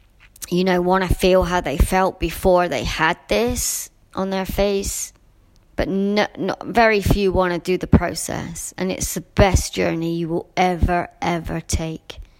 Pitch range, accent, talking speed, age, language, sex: 145-185 Hz, British, 160 wpm, 30-49, English, male